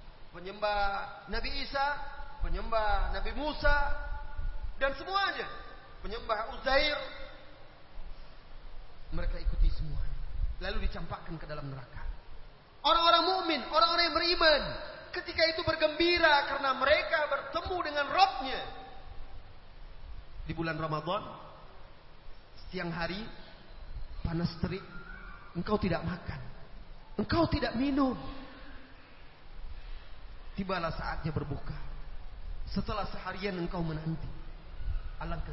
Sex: male